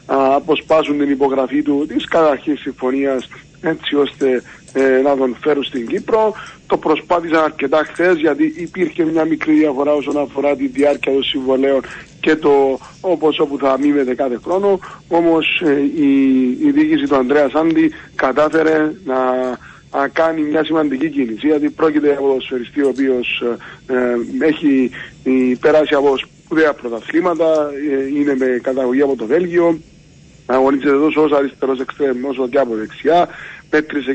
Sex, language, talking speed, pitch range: male, Greek, 150 wpm, 135-160 Hz